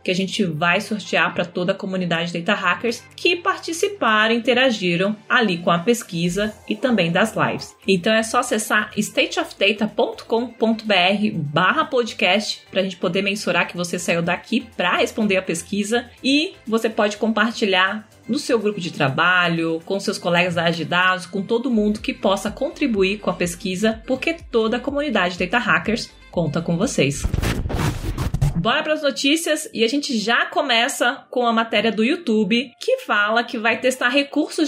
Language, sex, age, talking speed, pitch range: Portuguese, female, 30-49, 165 wpm, 195-260 Hz